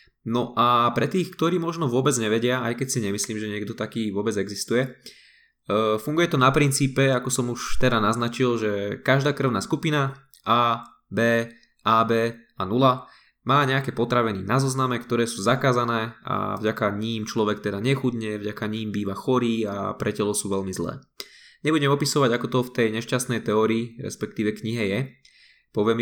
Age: 20-39